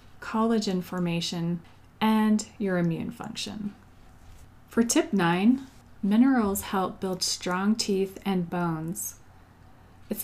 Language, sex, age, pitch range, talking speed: English, female, 30-49, 175-215 Hz, 100 wpm